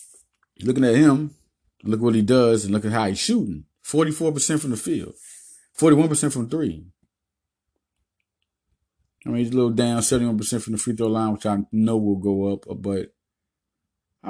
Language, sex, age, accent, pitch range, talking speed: English, male, 30-49, American, 95-125 Hz, 180 wpm